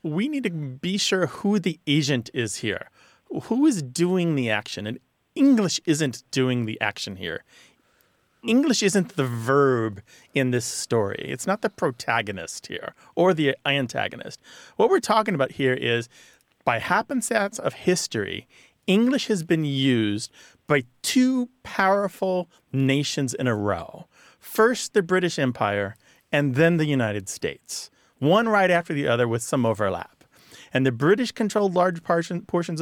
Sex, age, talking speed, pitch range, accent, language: male, 30-49, 150 wpm, 130-185 Hz, American, English